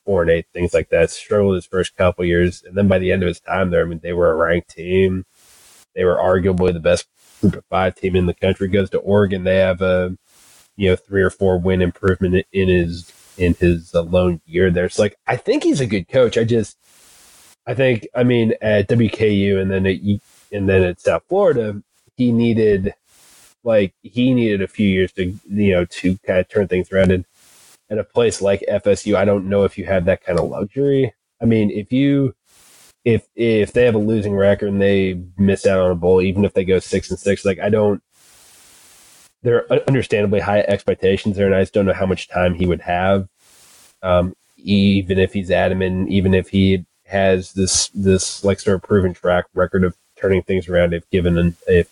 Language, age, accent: English, 20-39, American